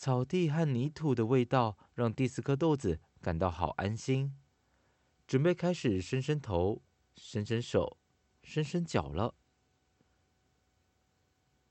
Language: Chinese